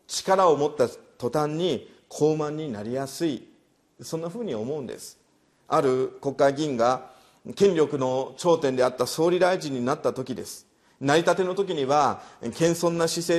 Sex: male